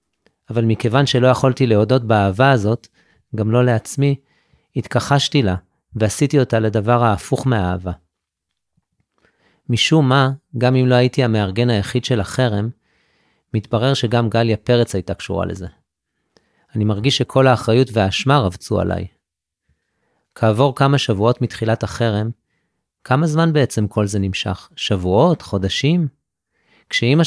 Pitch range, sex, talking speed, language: 105-130 Hz, male, 120 wpm, Hebrew